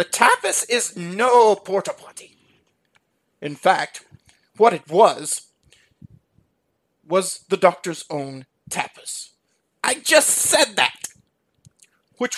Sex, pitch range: male, 160-240 Hz